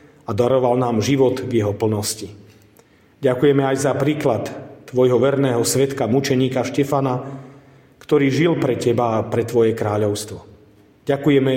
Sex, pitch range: male, 120-145 Hz